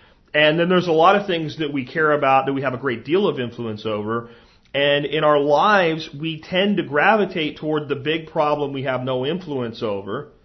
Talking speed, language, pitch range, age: 210 wpm, English, 140-190 Hz, 40-59